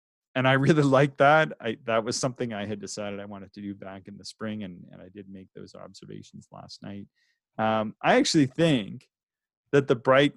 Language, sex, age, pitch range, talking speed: English, male, 30-49, 100-135 Hz, 210 wpm